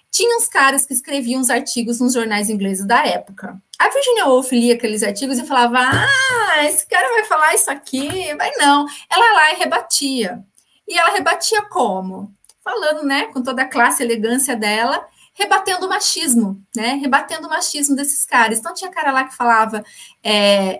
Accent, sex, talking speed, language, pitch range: Brazilian, female, 180 wpm, Portuguese, 215-275 Hz